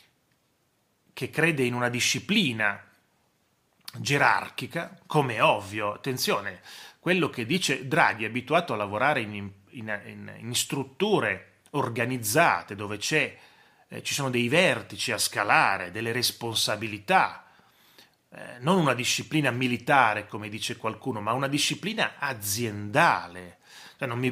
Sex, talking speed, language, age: male, 105 wpm, Italian, 30-49